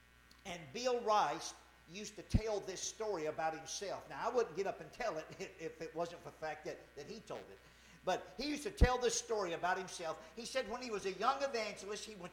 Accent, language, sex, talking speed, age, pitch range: American, English, male, 235 wpm, 50-69, 170-230 Hz